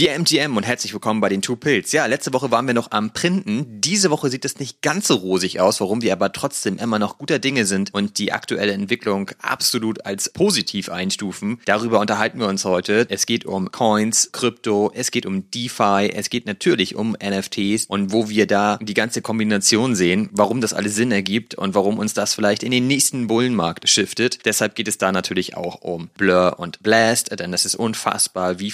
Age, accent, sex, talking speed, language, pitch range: 30-49, German, male, 210 wpm, German, 100-125 Hz